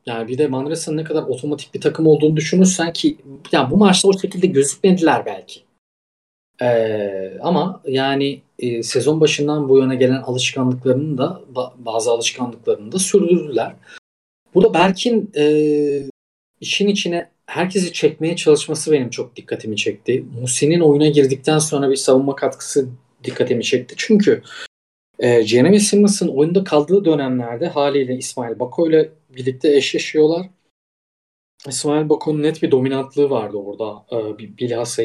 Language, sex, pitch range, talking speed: Turkish, male, 125-165 Hz, 135 wpm